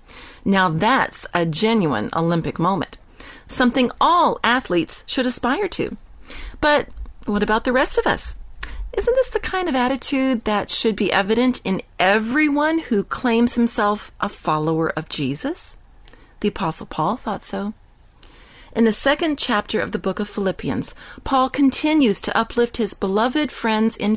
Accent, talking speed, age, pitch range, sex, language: American, 150 wpm, 40-59, 190-275 Hz, female, English